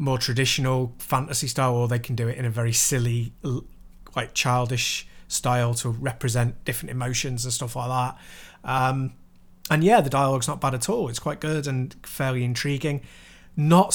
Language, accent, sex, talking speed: English, British, male, 170 wpm